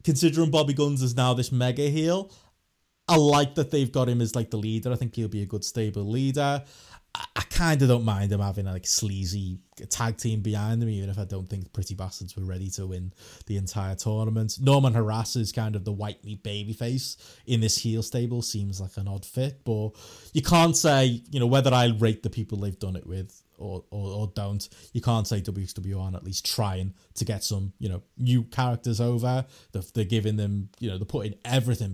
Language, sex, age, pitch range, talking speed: English, male, 20-39, 95-120 Hz, 220 wpm